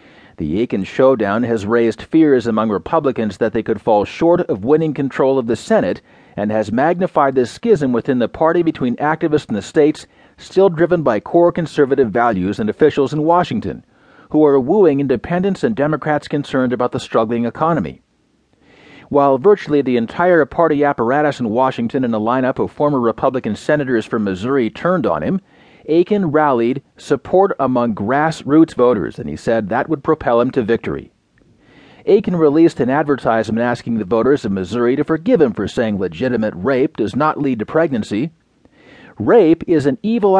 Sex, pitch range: male, 120-165 Hz